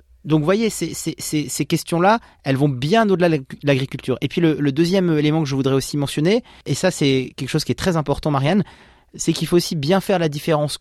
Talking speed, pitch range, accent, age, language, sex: 230 wpm, 130-160 Hz, French, 30-49, French, male